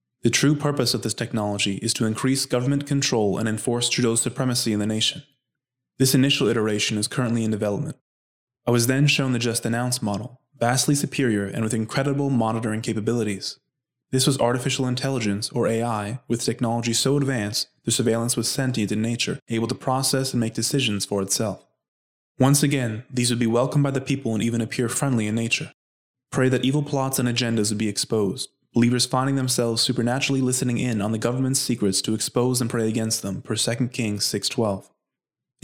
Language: English